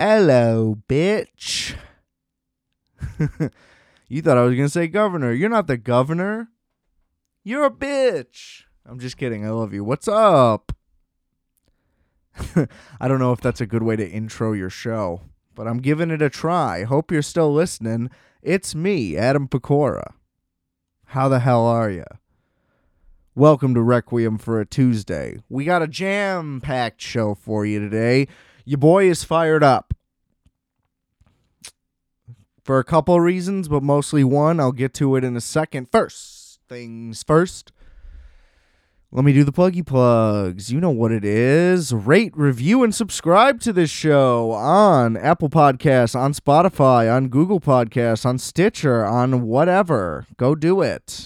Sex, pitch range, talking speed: male, 115-160 Hz, 145 wpm